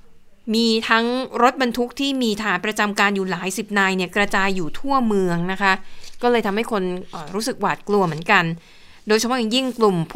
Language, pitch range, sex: Thai, 195-240 Hz, female